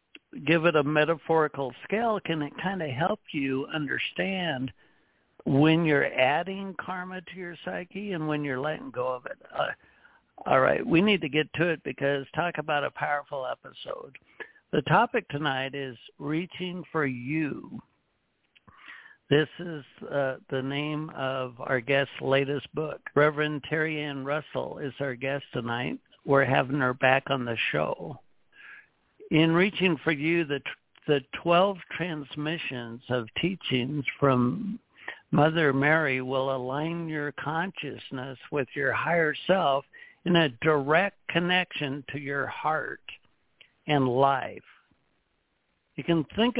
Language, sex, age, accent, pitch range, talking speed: English, male, 60-79, American, 140-170 Hz, 135 wpm